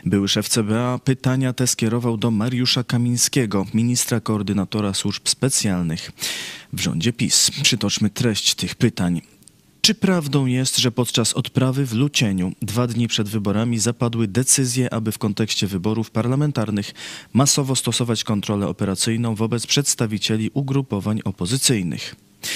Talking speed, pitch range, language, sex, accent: 125 wpm, 105-130 Hz, Polish, male, native